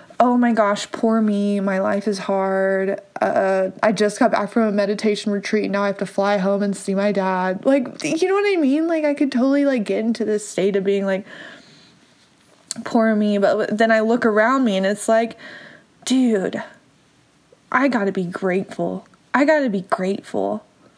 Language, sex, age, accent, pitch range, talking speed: English, female, 20-39, American, 190-230 Hz, 190 wpm